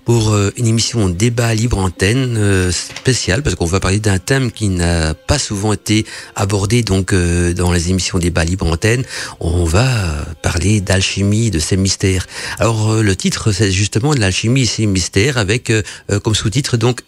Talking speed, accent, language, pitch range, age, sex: 165 wpm, French, French, 95-120 Hz, 50-69, male